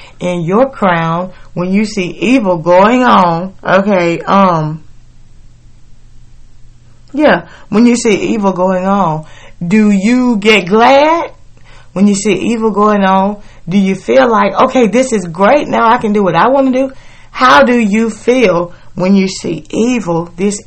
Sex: female